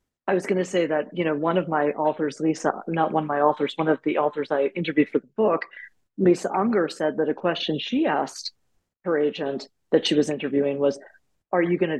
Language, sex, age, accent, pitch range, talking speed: English, female, 50-69, American, 155-195 Hz, 230 wpm